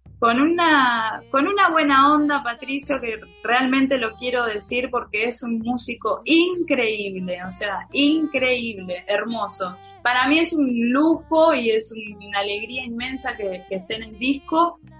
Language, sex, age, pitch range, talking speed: Spanish, female, 20-39, 220-295 Hz, 140 wpm